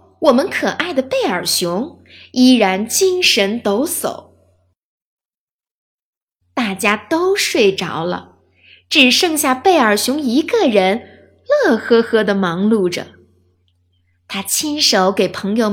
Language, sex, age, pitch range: Chinese, female, 20-39, 170-280 Hz